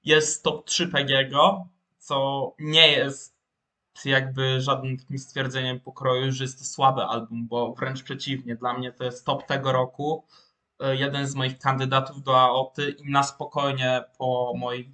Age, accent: 20-39, native